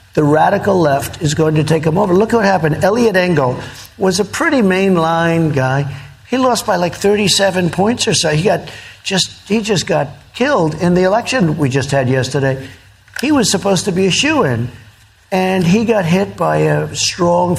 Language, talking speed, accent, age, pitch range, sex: English, 190 wpm, American, 50-69, 130-185 Hz, male